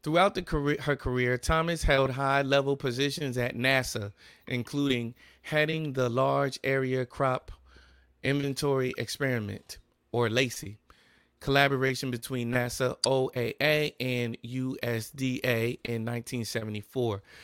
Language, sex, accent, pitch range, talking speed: English, male, American, 120-140 Hz, 100 wpm